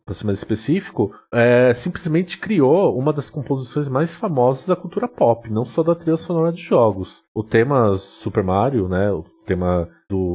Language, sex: Portuguese, male